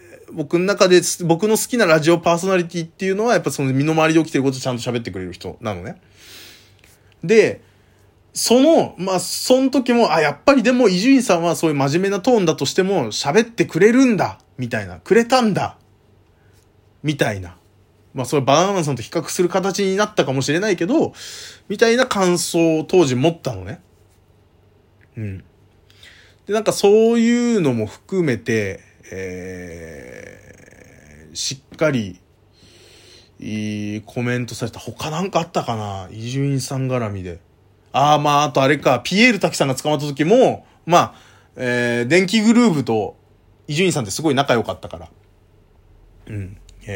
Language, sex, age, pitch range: Japanese, male, 20-39, 105-175 Hz